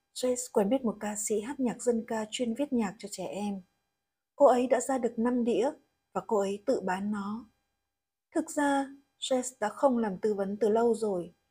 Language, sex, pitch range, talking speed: Vietnamese, female, 205-255 Hz, 210 wpm